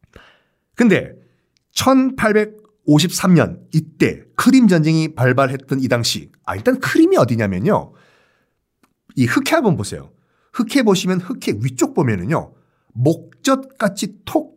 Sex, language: male, Korean